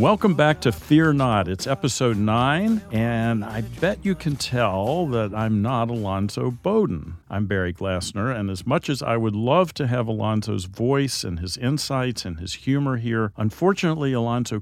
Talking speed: 170 wpm